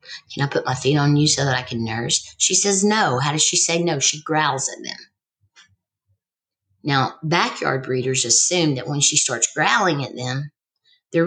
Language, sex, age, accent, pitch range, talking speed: English, female, 50-69, American, 130-180 Hz, 190 wpm